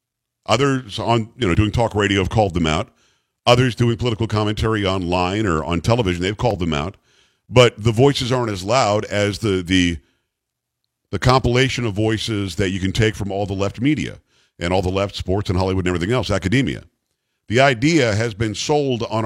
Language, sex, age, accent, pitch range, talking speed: English, male, 50-69, American, 100-125 Hz, 195 wpm